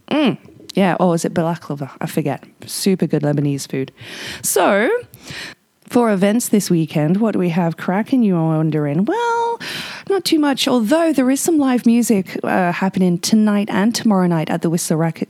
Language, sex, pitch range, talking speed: English, female, 160-200 Hz, 185 wpm